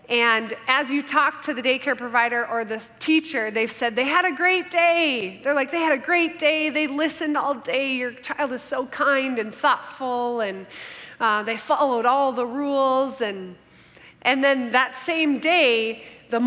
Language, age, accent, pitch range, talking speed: English, 20-39, American, 225-290 Hz, 180 wpm